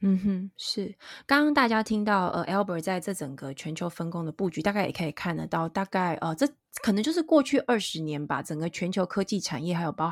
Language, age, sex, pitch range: Chinese, 20-39, female, 160-210 Hz